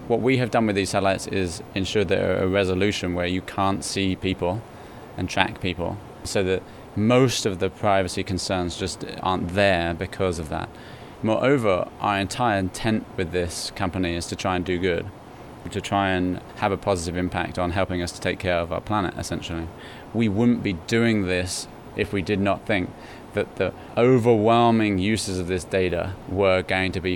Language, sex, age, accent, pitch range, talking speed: English, male, 20-39, British, 90-100 Hz, 190 wpm